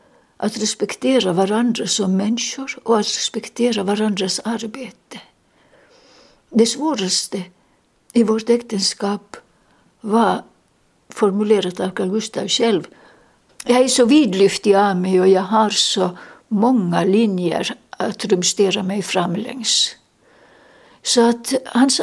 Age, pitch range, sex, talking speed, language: 60-79, 205-245 Hz, female, 105 wpm, Finnish